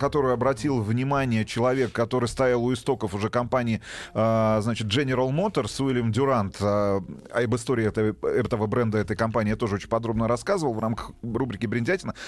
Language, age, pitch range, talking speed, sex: Russian, 30-49, 120-145 Hz, 145 wpm, male